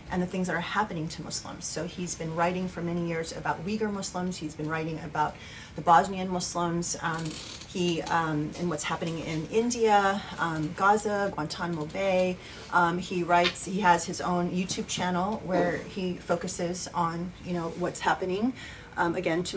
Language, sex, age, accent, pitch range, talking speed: English, female, 30-49, American, 160-185 Hz, 175 wpm